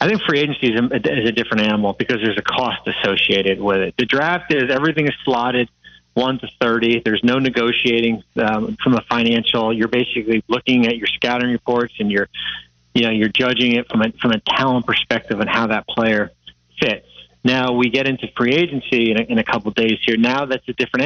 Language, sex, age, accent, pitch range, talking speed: English, male, 30-49, American, 115-130 Hz, 210 wpm